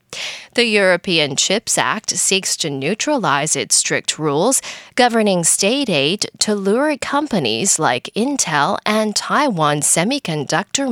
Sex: female